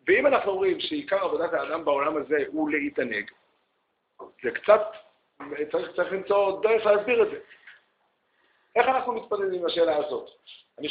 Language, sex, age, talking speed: Hebrew, male, 50-69, 140 wpm